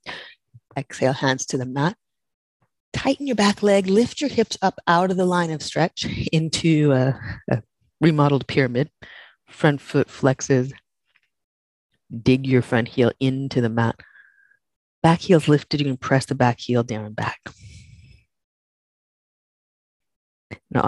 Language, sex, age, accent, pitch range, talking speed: English, female, 30-49, American, 120-175 Hz, 135 wpm